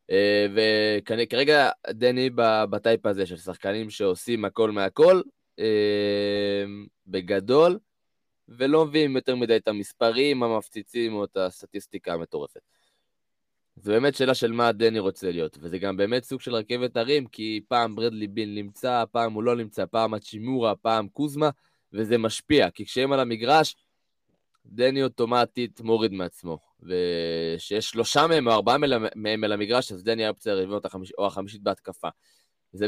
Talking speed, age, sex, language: 140 wpm, 20-39, male, Hebrew